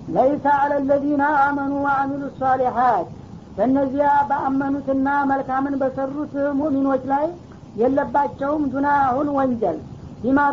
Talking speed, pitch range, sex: 110 wpm, 265-285 Hz, female